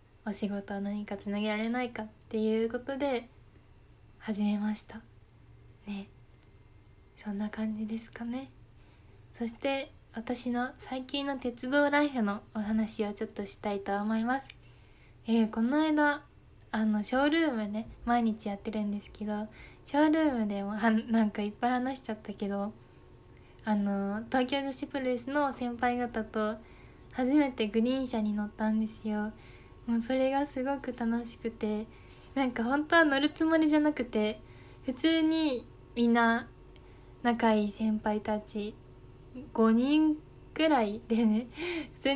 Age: 20-39